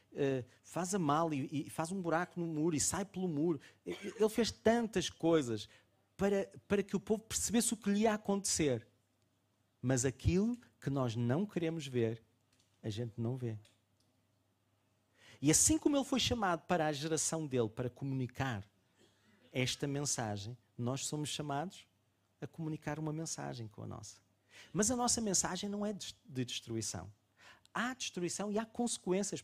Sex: male